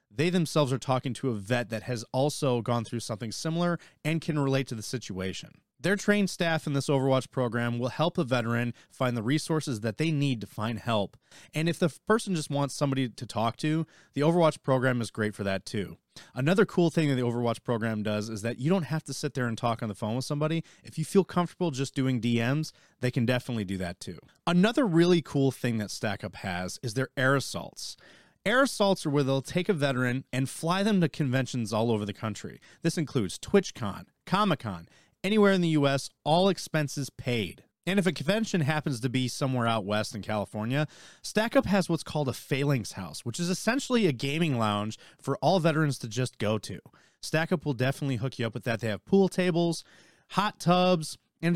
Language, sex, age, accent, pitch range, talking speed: English, male, 30-49, American, 120-165 Hz, 210 wpm